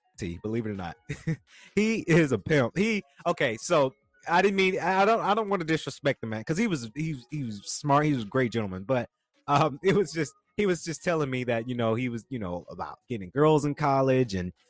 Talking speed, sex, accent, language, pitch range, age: 235 wpm, male, American, English, 115-165 Hz, 30-49